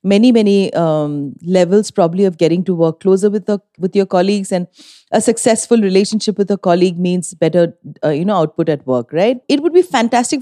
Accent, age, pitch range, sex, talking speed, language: Indian, 30-49, 170-215 Hz, female, 200 wpm, English